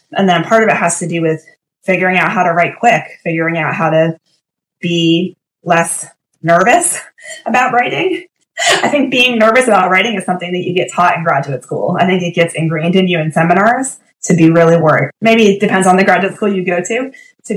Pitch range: 160-185 Hz